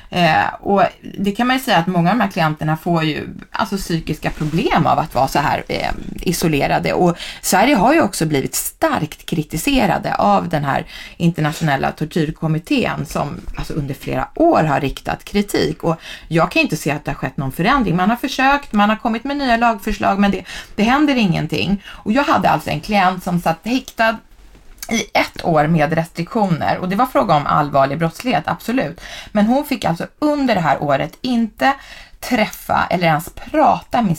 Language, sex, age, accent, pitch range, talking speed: English, female, 20-39, Swedish, 165-230 Hz, 190 wpm